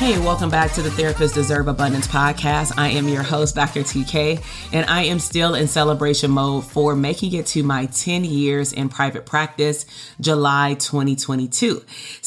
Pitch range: 140-165 Hz